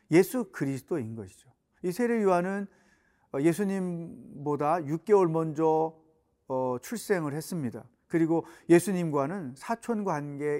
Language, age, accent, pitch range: Korean, 40-59, native, 150-200 Hz